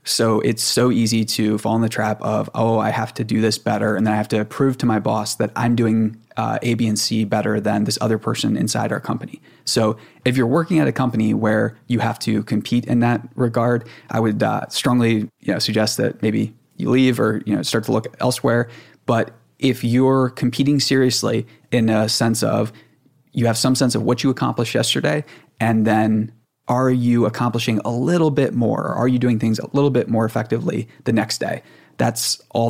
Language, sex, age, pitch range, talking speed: English, male, 20-39, 110-125 Hz, 215 wpm